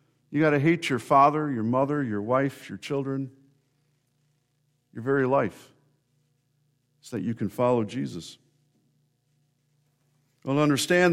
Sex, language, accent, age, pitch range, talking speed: male, English, American, 50-69, 130-150 Hz, 130 wpm